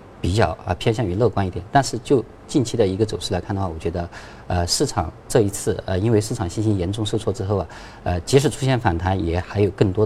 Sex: male